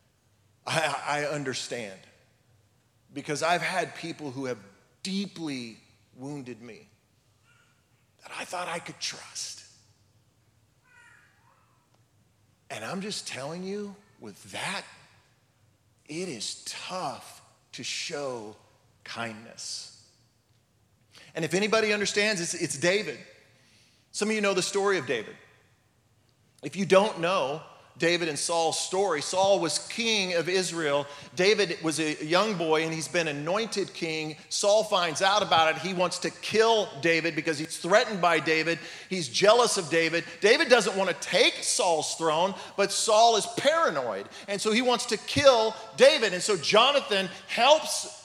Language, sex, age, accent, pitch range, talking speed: English, male, 40-59, American, 120-200 Hz, 135 wpm